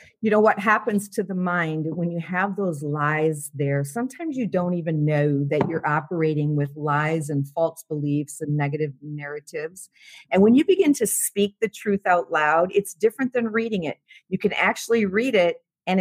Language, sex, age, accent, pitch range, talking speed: English, female, 50-69, American, 155-200 Hz, 185 wpm